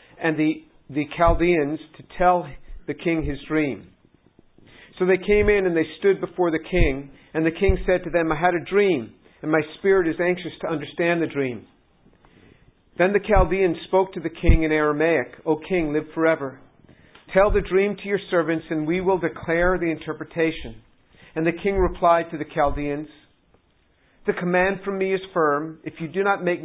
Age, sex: 50-69, male